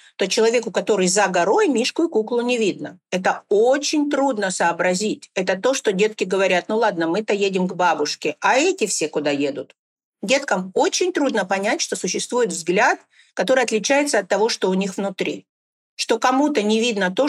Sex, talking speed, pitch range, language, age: female, 170 wpm, 190-245 Hz, Russian, 50-69